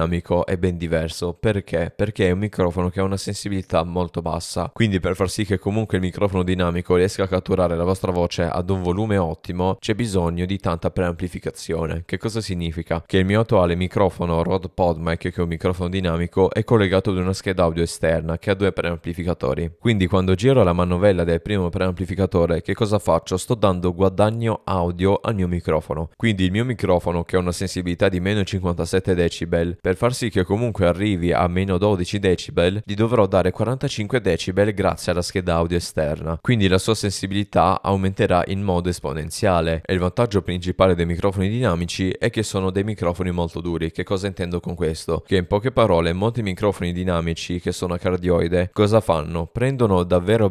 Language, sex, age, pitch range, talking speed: Italian, male, 20-39, 85-100 Hz, 185 wpm